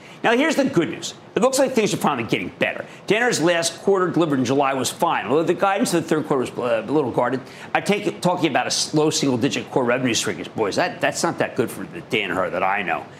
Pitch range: 140-185 Hz